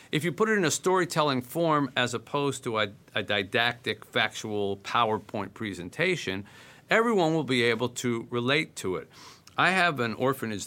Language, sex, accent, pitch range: English, male, American, 105-155 Hz